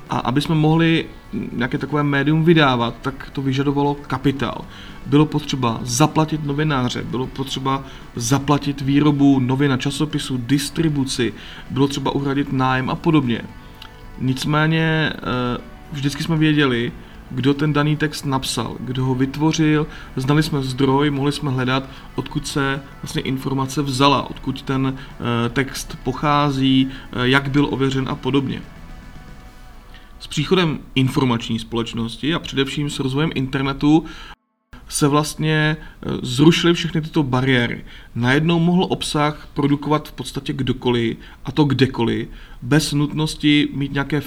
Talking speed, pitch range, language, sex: 120 wpm, 130-150 Hz, Czech, male